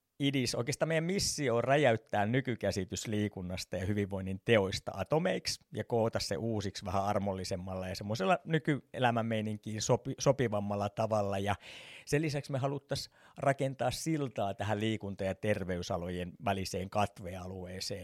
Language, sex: Finnish, male